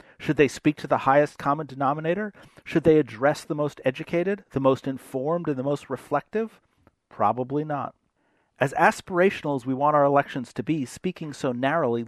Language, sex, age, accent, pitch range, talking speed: English, male, 40-59, American, 130-165 Hz, 175 wpm